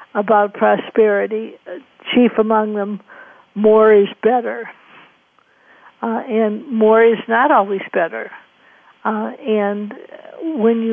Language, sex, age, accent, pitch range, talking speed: English, female, 60-79, American, 215-240 Hz, 105 wpm